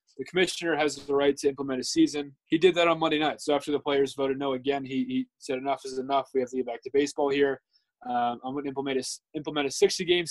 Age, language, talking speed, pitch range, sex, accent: 20-39, English, 255 wpm, 130-155 Hz, male, American